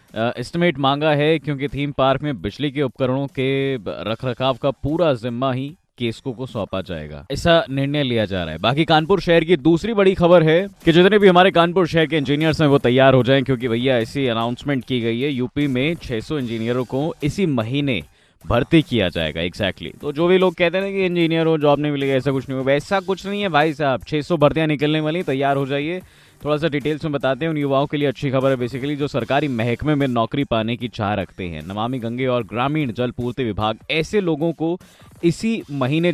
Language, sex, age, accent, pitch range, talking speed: Hindi, male, 20-39, native, 115-150 Hz, 215 wpm